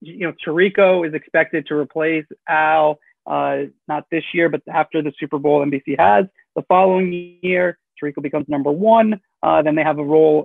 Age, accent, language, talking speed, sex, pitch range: 30-49, American, English, 185 wpm, male, 150-185 Hz